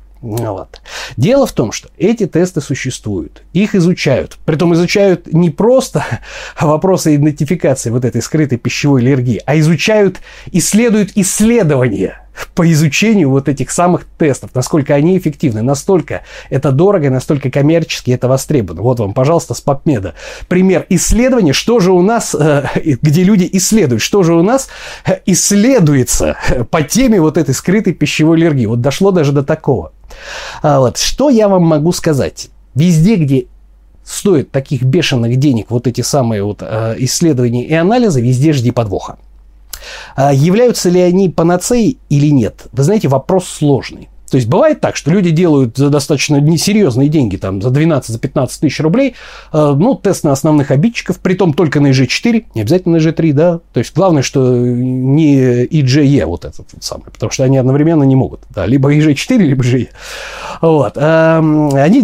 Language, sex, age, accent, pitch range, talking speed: Russian, male, 30-49, native, 130-180 Hz, 155 wpm